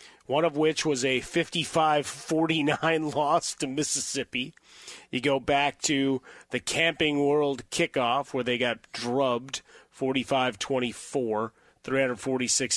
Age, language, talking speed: 30-49, English, 110 wpm